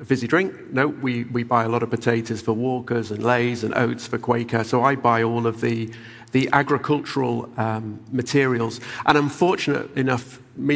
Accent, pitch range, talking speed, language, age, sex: British, 115-140 Hz, 185 wpm, English, 40-59, male